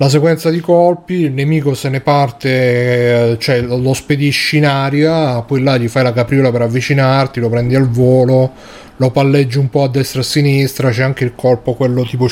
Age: 30-49